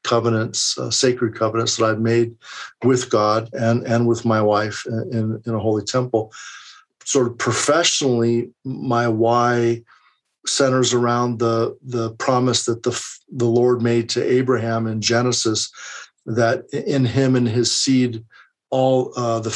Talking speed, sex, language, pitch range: 145 wpm, male, English, 115-125 Hz